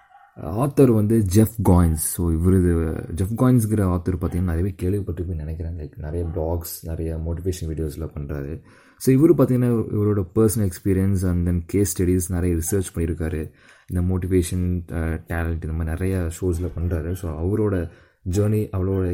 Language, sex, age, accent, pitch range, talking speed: Tamil, male, 20-39, native, 80-100 Hz, 145 wpm